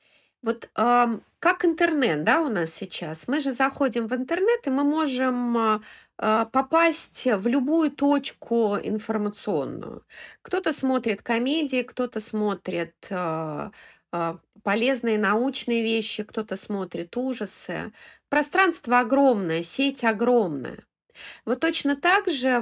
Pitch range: 220-275 Hz